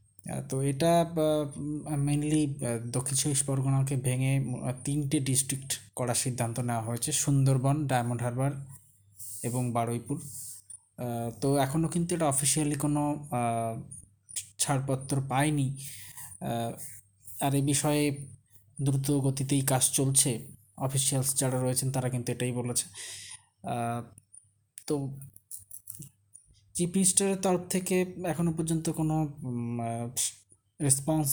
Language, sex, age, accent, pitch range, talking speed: Bengali, male, 20-39, native, 120-150 Hz, 90 wpm